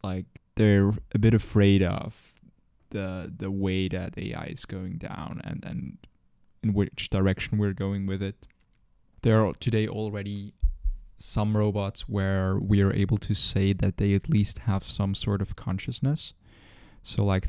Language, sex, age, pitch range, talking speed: English, male, 20-39, 95-110 Hz, 160 wpm